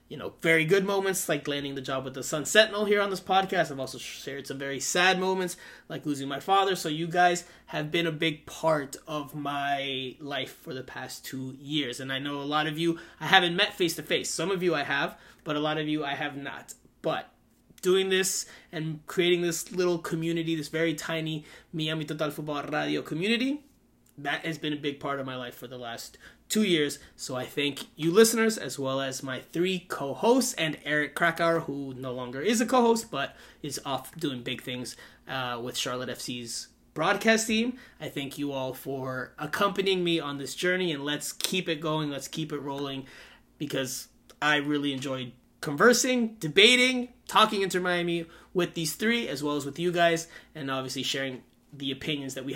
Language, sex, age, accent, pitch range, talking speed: English, male, 20-39, American, 135-180 Hz, 205 wpm